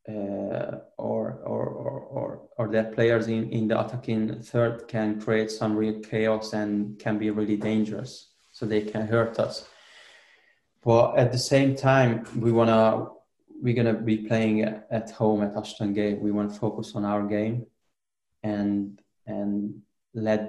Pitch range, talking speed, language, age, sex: 105-110 Hz, 160 wpm, English, 20-39, male